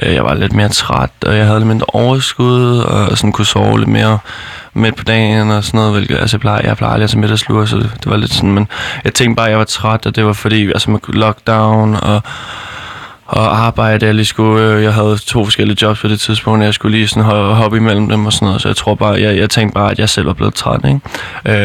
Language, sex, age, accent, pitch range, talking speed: Danish, male, 20-39, native, 105-110 Hz, 250 wpm